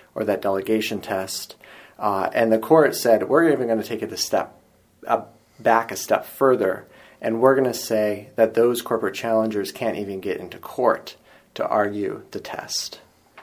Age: 30-49